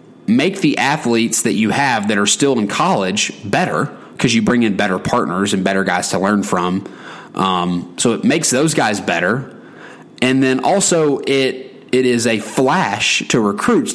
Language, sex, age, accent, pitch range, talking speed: English, male, 30-49, American, 105-145 Hz, 175 wpm